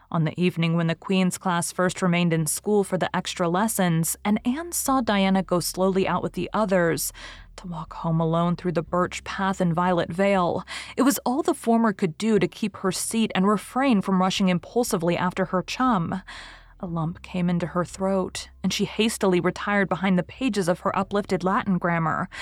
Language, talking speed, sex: English, 195 wpm, female